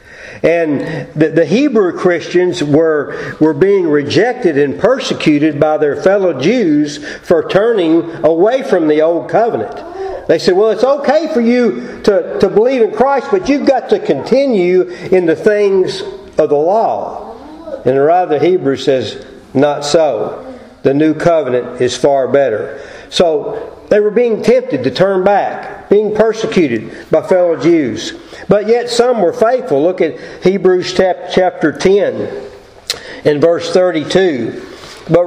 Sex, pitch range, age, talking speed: male, 160-245 Hz, 50-69, 145 wpm